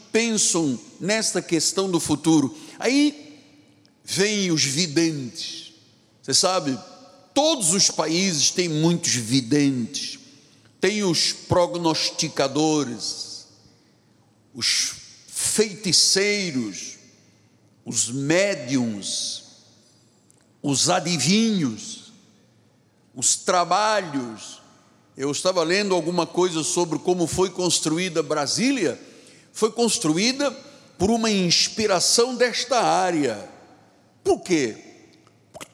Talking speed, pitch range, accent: 80 wpm, 160-225 Hz, Brazilian